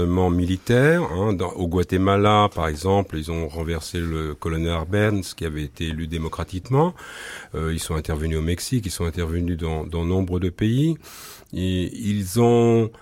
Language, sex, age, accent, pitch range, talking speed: French, male, 40-59, French, 95-125 Hz, 160 wpm